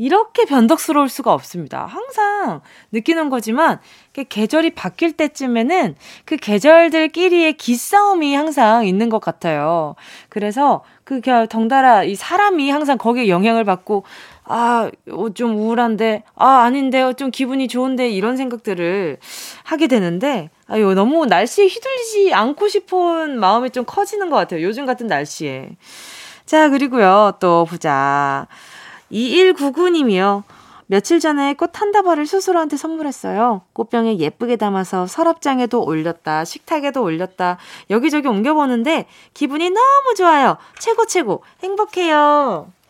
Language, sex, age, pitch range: Korean, female, 20-39, 210-330 Hz